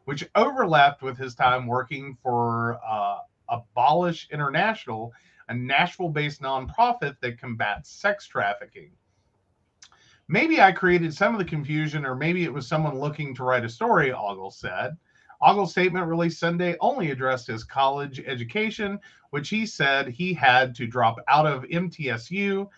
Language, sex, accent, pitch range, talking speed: English, male, American, 125-175 Hz, 145 wpm